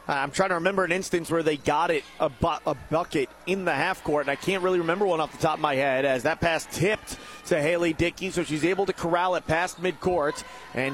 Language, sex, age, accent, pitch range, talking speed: English, male, 30-49, American, 170-225 Hz, 245 wpm